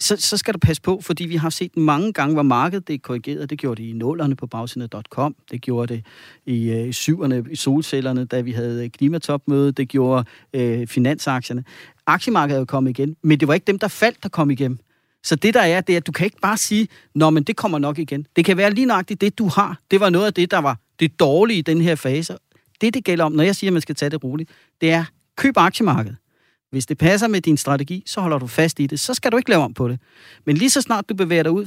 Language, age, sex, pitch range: Danish, 40-59, male, 135-180 Hz